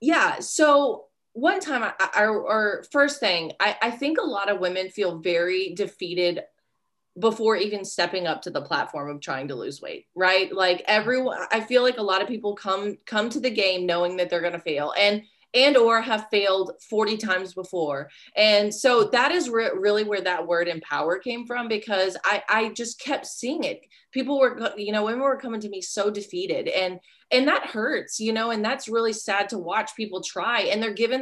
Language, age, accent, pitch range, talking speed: English, 30-49, American, 180-225 Hz, 210 wpm